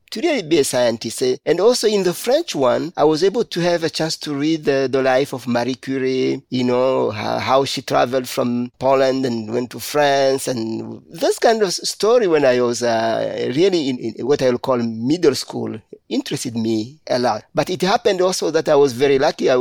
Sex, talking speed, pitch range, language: male, 210 wpm, 120-145 Hz, English